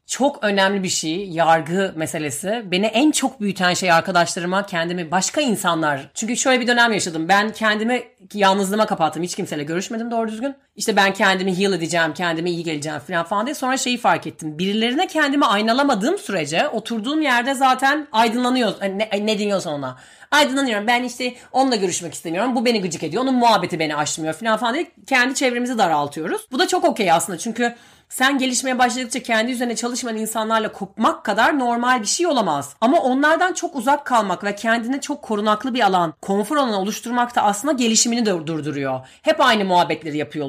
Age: 30-49